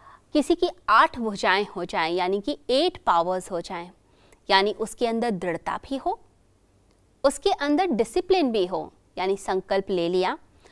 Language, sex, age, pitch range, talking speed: Hindi, female, 20-39, 195-310 Hz, 150 wpm